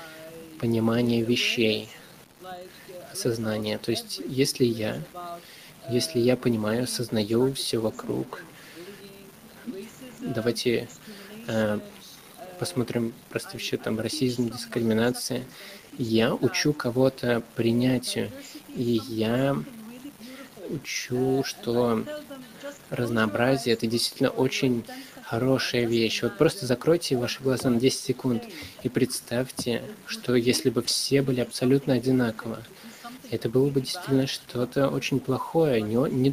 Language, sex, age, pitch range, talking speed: Russian, male, 20-39, 115-155 Hz, 95 wpm